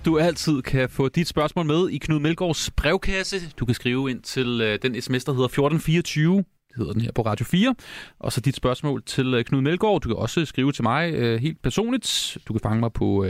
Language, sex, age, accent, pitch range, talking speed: Danish, male, 30-49, native, 120-165 Hz, 215 wpm